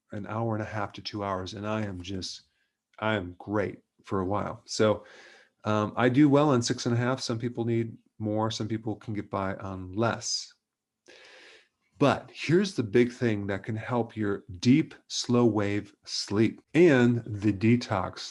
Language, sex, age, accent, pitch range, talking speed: English, male, 40-59, American, 105-120 Hz, 180 wpm